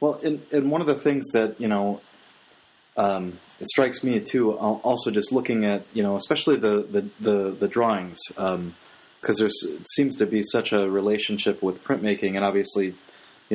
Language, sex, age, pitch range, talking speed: English, male, 30-49, 100-115 Hz, 185 wpm